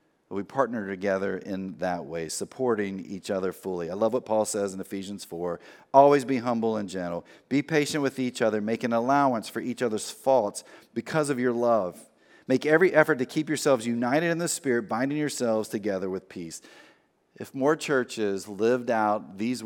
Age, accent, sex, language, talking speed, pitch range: 40-59, American, male, English, 185 wpm, 105-150 Hz